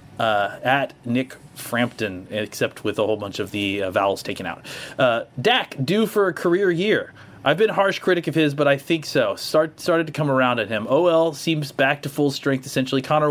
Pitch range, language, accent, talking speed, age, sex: 120-150 Hz, English, American, 215 wpm, 30-49, male